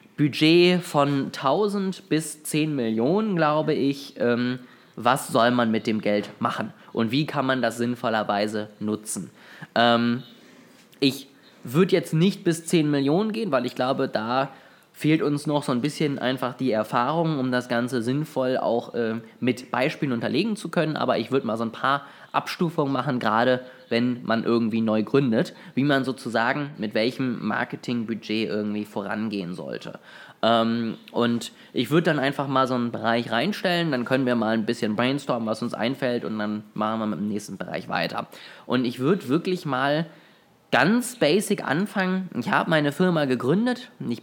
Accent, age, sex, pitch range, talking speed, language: German, 20-39, male, 120-155 Hz, 165 wpm, German